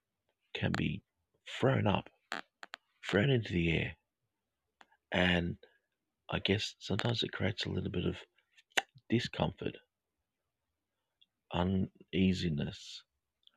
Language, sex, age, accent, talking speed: English, male, 50-69, Australian, 90 wpm